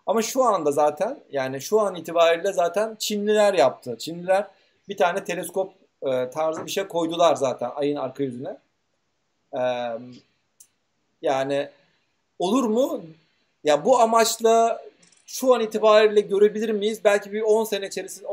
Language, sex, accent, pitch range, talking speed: Turkish, male, native, 155-205 Hz, 135 wpm